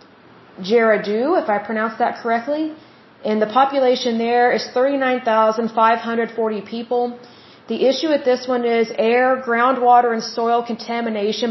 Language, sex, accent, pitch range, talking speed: Bengali, female, American, 225-250 Hz, 125 wpm